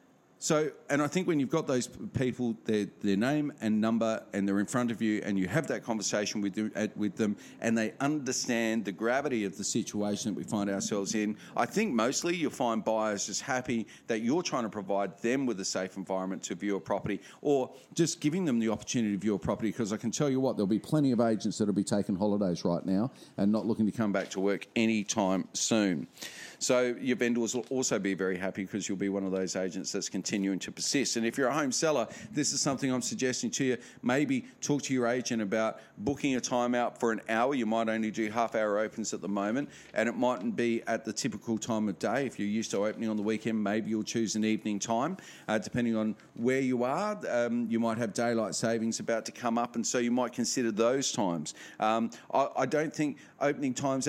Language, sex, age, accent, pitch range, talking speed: English, male, 40-59, Australian, 105-125 Hz, 235 wpm